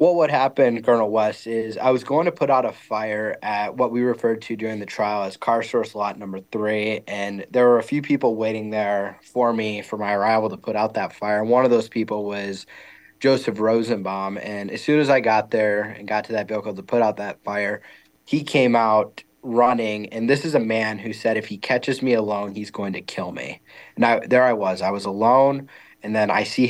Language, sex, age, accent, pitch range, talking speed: English, male, 20-39, American, 105-120 Hz, 230 wpm